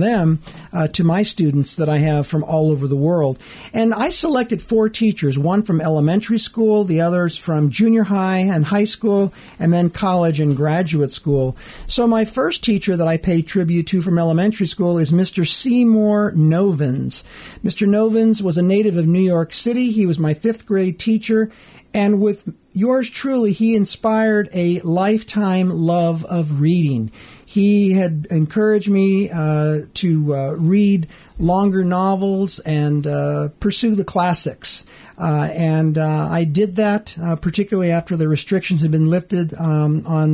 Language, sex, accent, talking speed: English, male, American, 160 wpm